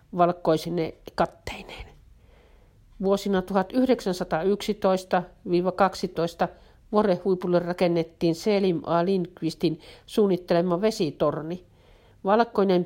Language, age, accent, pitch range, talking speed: Finnish, 50-69, native, 160-190 Hz, 50 wpm